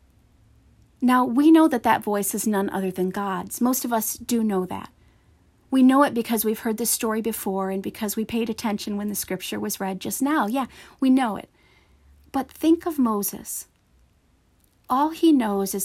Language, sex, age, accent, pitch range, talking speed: English, female, 40-59, American, 200-245 Hz, 190 wpm